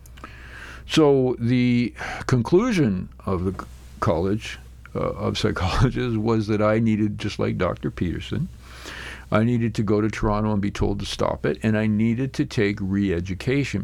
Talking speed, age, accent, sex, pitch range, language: 150 wpm, 50-69, American, male, 90-120 Hz, English